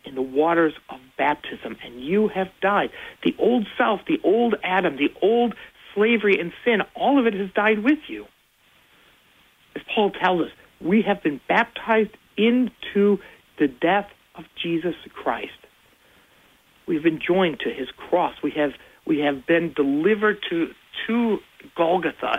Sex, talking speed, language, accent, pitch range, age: male, 150 wpm, English, American, 170-220 Hz, 60-79